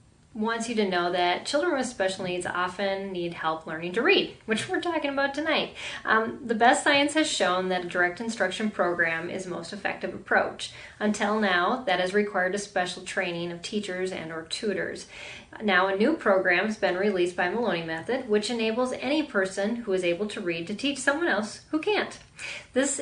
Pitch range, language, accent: 180-225 Hz, English, American